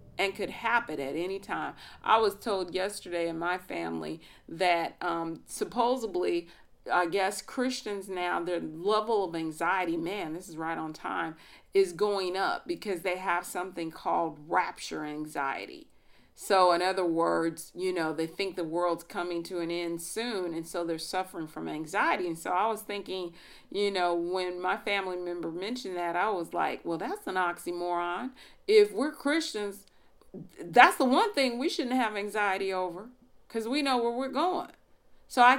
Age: 40-59